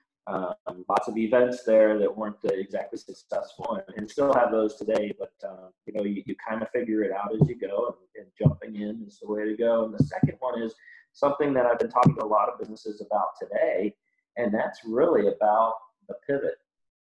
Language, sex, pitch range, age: English, male, 105-140 Hz, 40-59